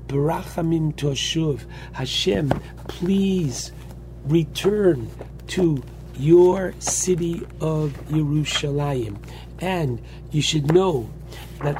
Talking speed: 75 wpm